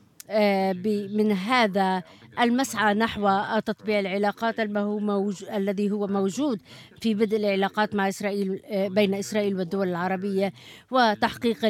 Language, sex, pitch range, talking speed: Arabic, female, 195-215 Hz, 105 wpm